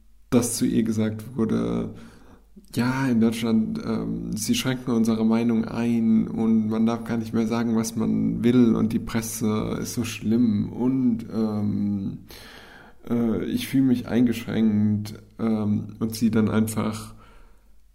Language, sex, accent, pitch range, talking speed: English, male, German, 110-120 Hz, 140 wpm